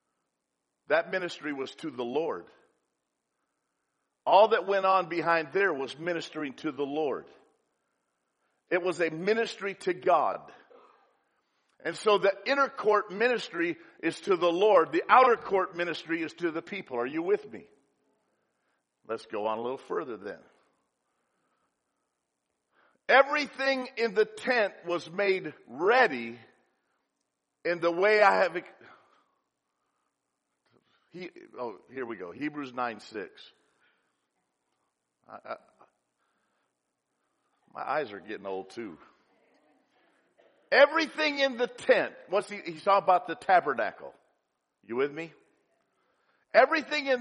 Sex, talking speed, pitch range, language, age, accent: male, 120 wpm, 160-240 Hz, English, 50-69, American